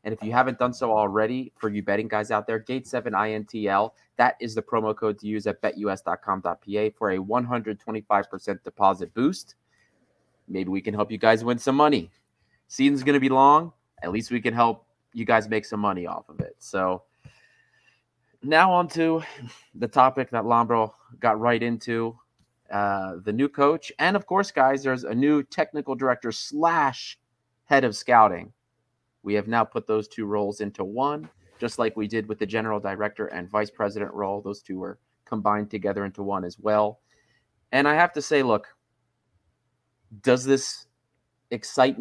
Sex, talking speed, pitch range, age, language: male, 175 wpm, 105-125 Hz, 30-49, English